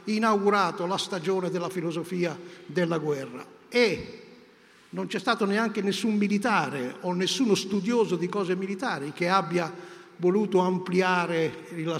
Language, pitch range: Italian, 175-205 Hz